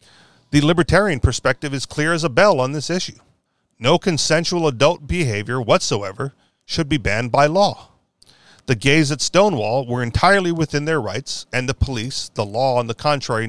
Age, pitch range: 40-59, 125-155 Hz